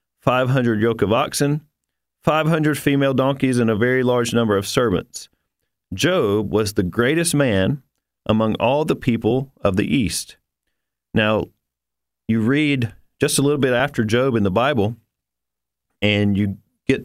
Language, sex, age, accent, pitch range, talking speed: English, male, 40-59, American, 100-130 Hz, 145 wpm